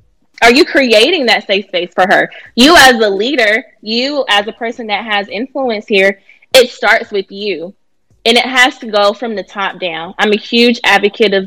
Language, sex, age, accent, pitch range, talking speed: English, female, 20-39, American, 210-270 Hz, 200 wpm